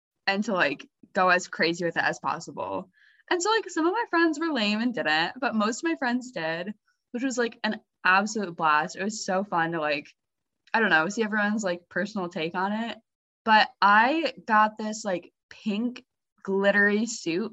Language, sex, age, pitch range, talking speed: English, female, 20-39, 165-215 Hz, 195 wpm